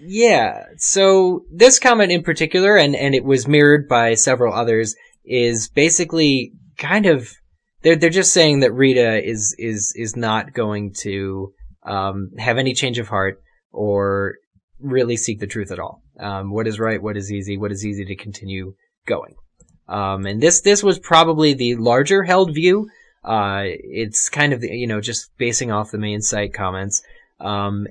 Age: 10-29